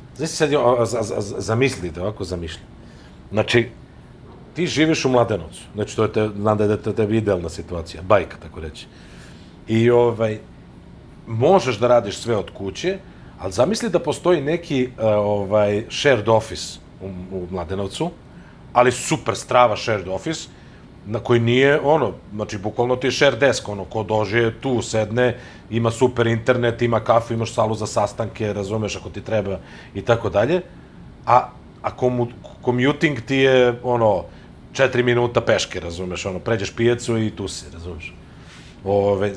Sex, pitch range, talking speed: male, 95-125 Hz, 150 wpm